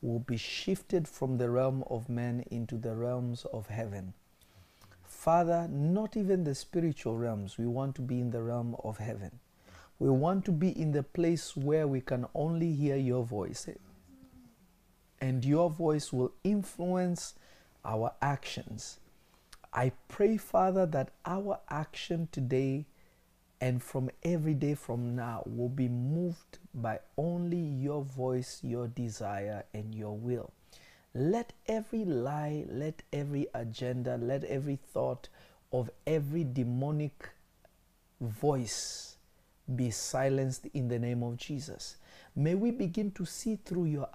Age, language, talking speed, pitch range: 50-69, English, 135 wpm, 120-165 Hz